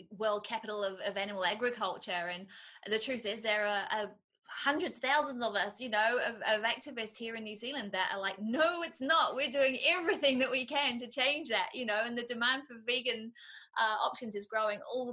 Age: 20-39